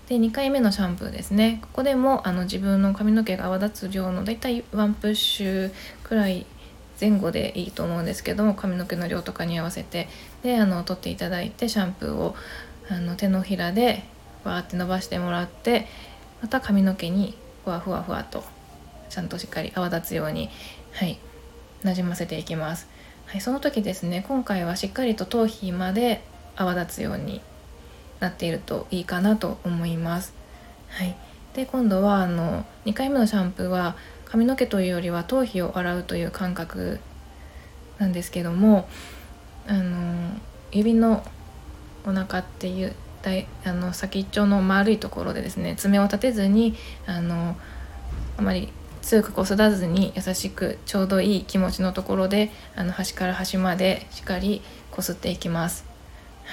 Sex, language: female, Japanese